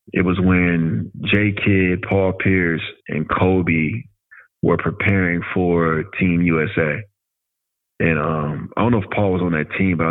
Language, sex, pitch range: English, male, 85-100 Hz